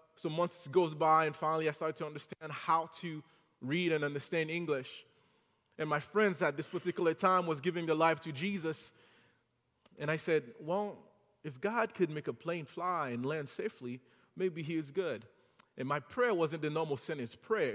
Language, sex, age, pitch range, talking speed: English, male, 30-49, 145-185 Hz, 185 wpm